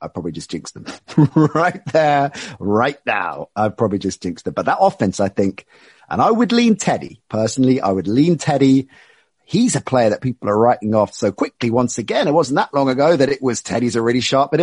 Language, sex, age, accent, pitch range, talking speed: English, male, 30-49, British, 110-135 Hz, 220 wpm